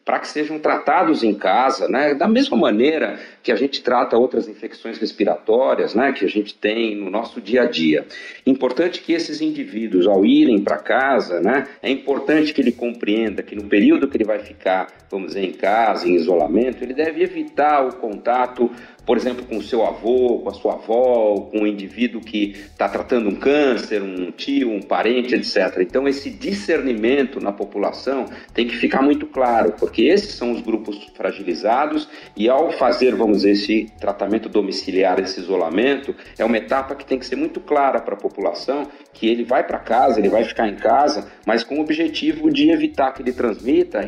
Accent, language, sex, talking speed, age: Brazilian, Portuguese, male, 190 wpm, 50-69